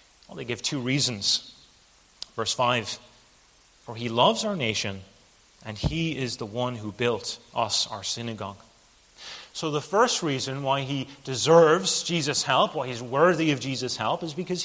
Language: English